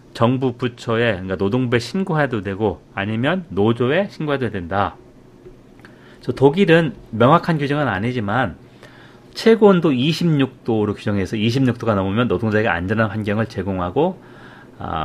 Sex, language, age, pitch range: male, Korean, 40-59, 110-140 Hz